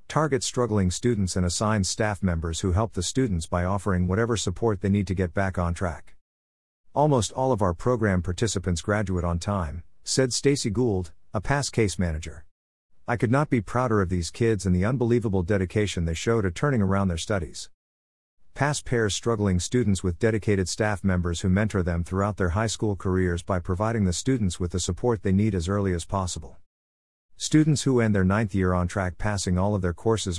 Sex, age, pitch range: male, 50-69, 90-115 Hz